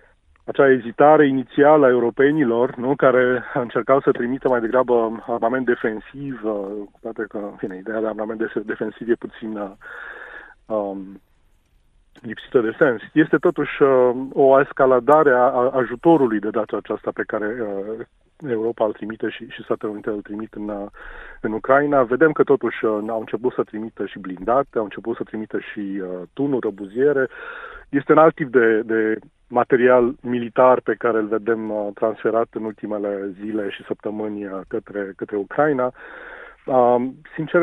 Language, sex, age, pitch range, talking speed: Romanian, male, 30-49, 105-130 Hz, 145 wpm